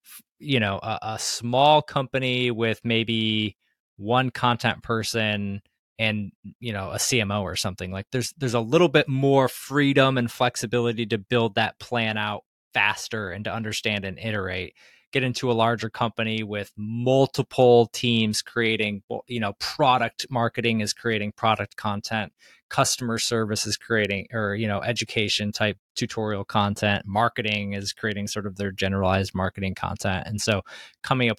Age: 20-39